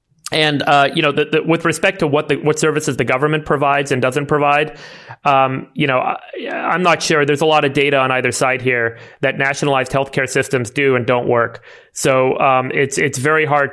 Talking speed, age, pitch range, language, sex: 215 wpm, 30-49, 130-145 Hz, English, male